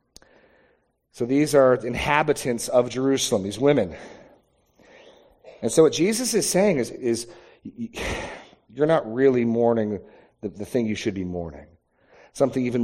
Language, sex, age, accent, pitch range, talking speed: English, male, 40-59, American, 120-170 Hz, 135 wpm